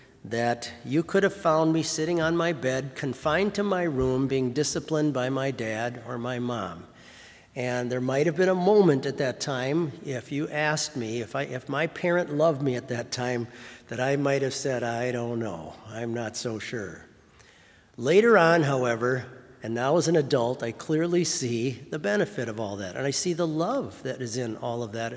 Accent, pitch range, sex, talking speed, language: American, 120-160 Hz, male, 205 wpm, English